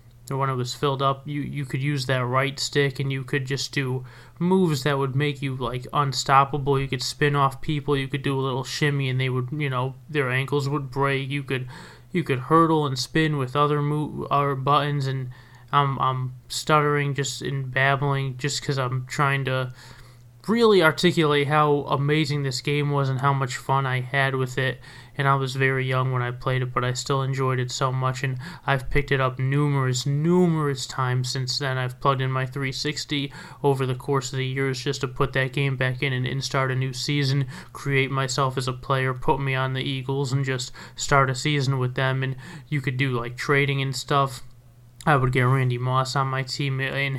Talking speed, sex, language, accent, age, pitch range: 210 wpm, male, English, American, 30-49, 130-145 Hz